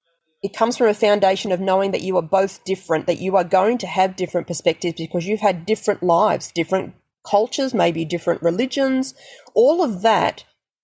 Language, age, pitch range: English, 30-49, 170-215 Hz